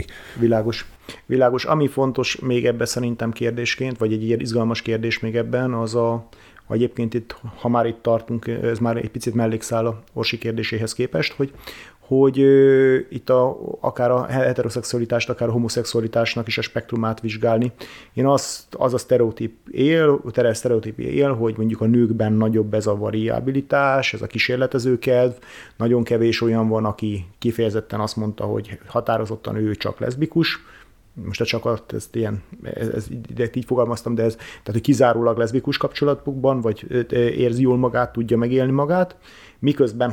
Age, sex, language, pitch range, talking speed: 30-49, male, Hungarian, 110-125 Hz, 150 wpm